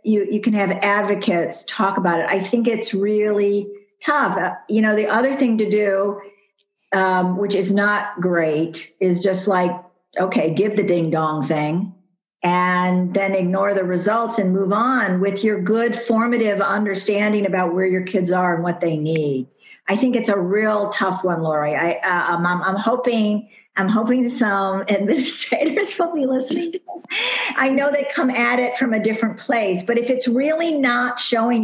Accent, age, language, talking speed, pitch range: American, 50-69, English, 180 wpm, 190-235 Hz